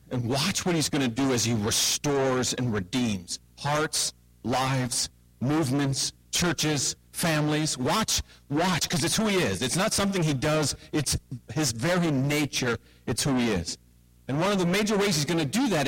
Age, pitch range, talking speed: 50-69, 120-160 Hz, 180 wpm